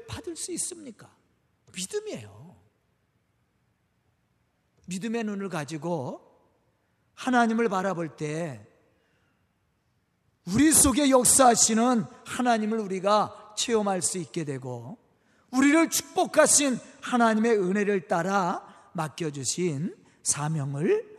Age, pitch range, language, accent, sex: 40-59, 160-260 Hz, Korean, native, male